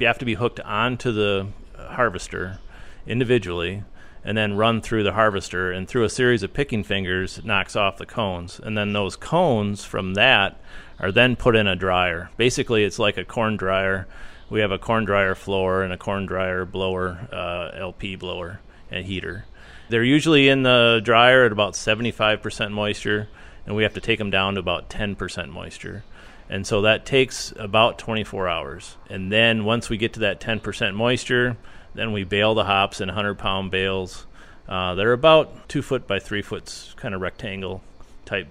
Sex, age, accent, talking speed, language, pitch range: male, 30-49, American, 180 wpm, English, 95-110 Hz